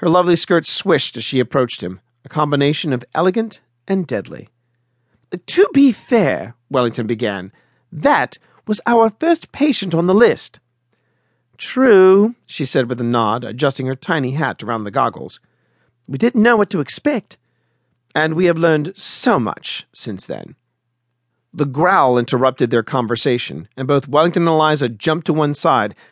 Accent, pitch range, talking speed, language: American, 125-175 Hz, 155 wpm, English